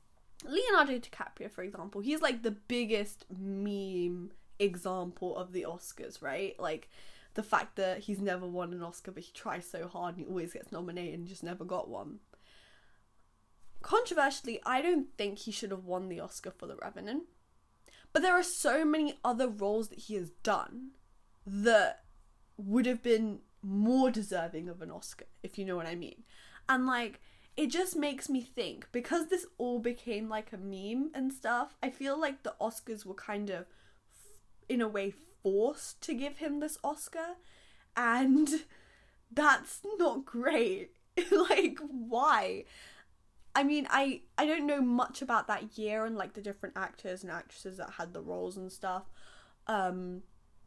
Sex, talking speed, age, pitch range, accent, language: female, 165 wpm, 10-29, 185-275 Hz, British, English